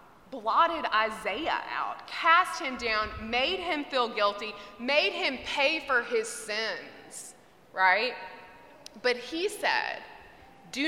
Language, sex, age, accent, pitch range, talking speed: English, female, 20-39, American, 205-275 Hz, 115 wpm